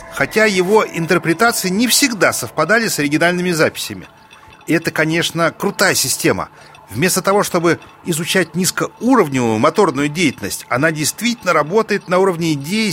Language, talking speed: Russian, 120 wpm